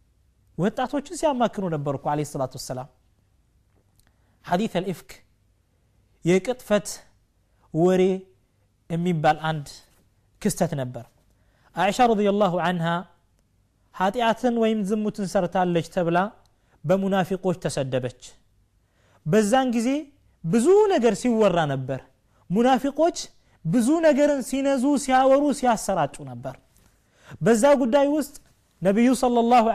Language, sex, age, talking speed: Amharic, male, 30-49, 80 wpm